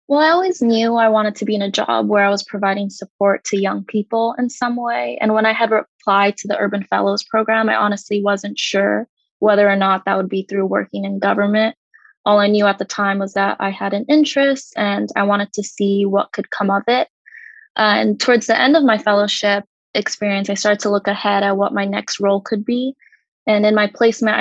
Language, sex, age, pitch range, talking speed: English, female, 20-39, 200-225 Hz, 230 wpm